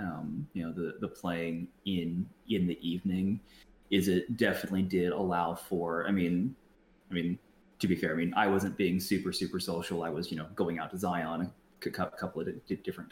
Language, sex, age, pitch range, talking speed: English, male, 20-39, 90-100 Hz, 195 wpm